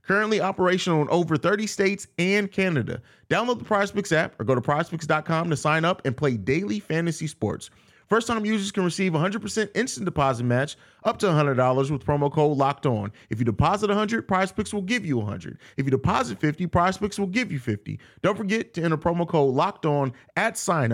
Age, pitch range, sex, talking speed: 30-49, 130-190 Hz, male, 190 wpm